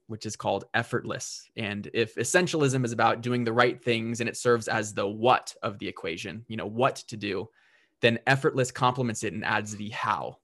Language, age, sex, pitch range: English, 20-39, male, 110-125 Hz